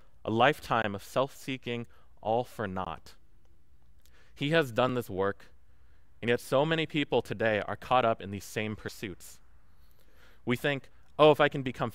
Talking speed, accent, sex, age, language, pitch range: 160 wpm, American, male, 20-39, English, 95-130 Hz